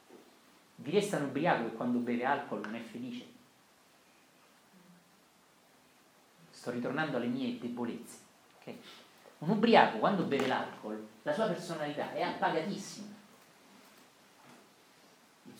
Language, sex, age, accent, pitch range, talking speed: Italian, male, 40-59, native, 120-195 Hz, 110 wpm